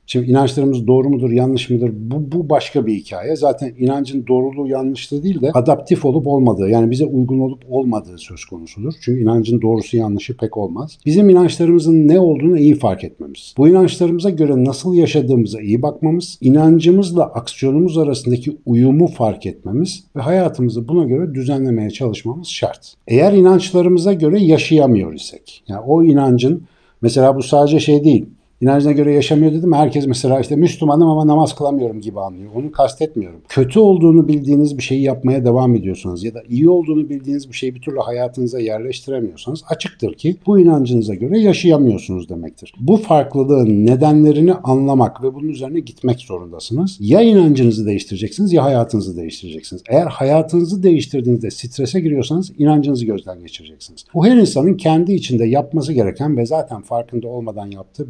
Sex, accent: male, native